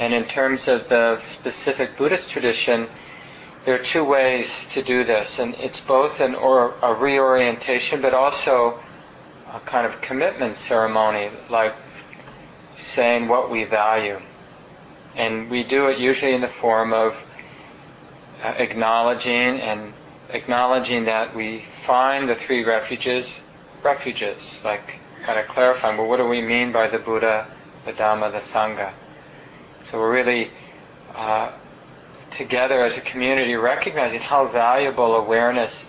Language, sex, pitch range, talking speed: English, male, 110-125 Hz, 135 wpm